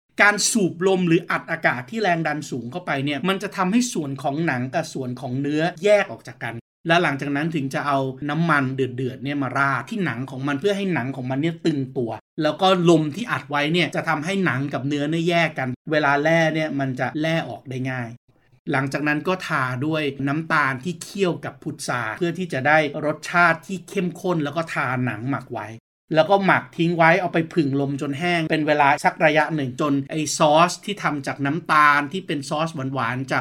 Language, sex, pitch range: Thai, male, 135-170 Hz